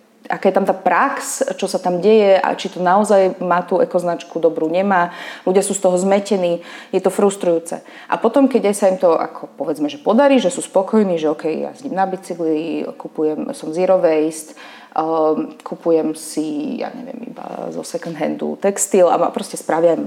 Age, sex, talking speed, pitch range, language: 30-49, female, 190 wpm, 160-205 Hz, Slovak